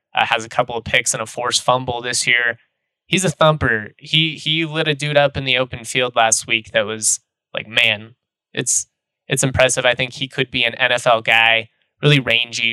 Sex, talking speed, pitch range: male, 210 wpm, 115-135 Hz